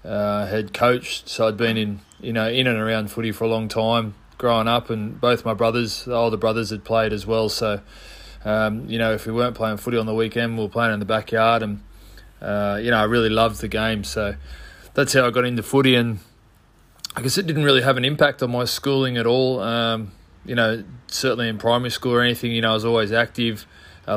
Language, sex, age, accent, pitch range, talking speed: English, male, 20-39, Australian, 110-120 Hz, 235 wpm